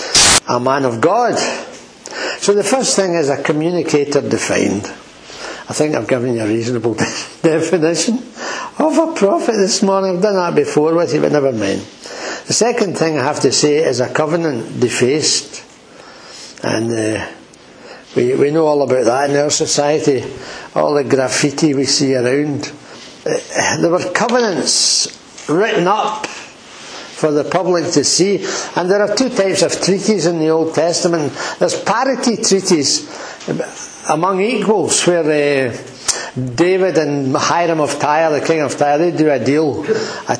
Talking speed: 155 wpm